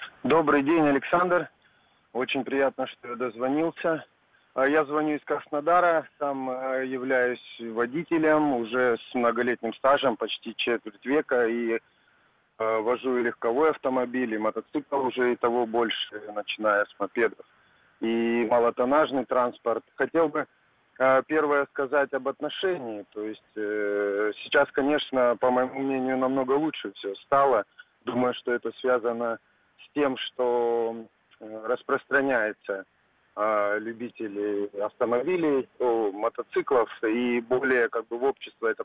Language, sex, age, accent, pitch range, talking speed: Russian, male, 30-49, native, 115-145 Hz, 120 wpm